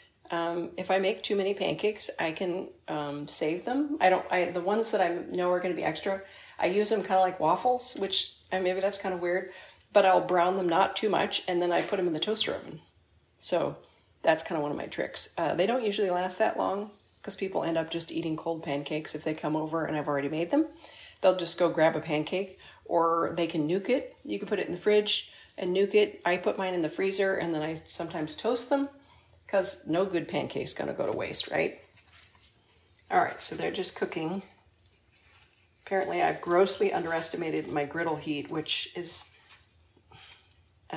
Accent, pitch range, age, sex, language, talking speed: American, 155-195 Hz, 40-59, female, English, 210 wpm